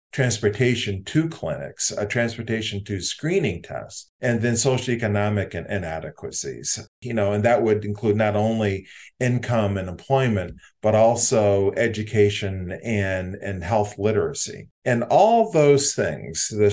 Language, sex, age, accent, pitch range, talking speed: English, male, 40-59, American, 100-120 Hz, 125 wpm